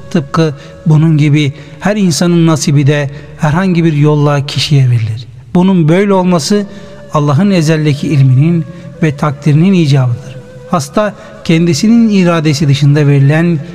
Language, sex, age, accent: Turkish, male, 60-79, native